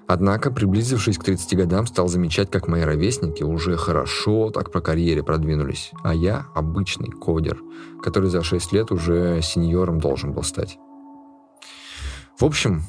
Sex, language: male, Russian